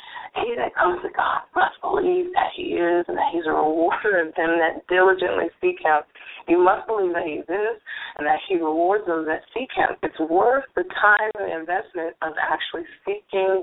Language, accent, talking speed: English, American, 195 wpm